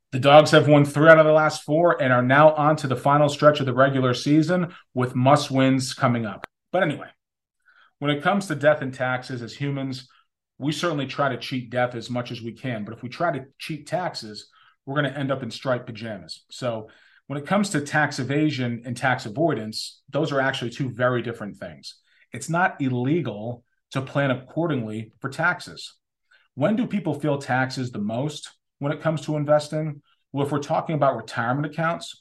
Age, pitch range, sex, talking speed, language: 40-59, 120-145 Hz, male, 200 wpm, English